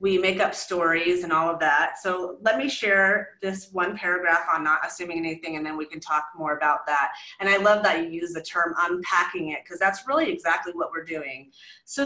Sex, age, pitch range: female, 30-49, 175-215 Hz